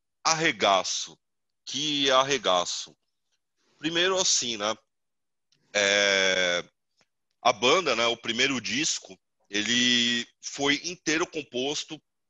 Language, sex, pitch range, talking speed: Portuguese, male, 100-130 Hz, 85 wpm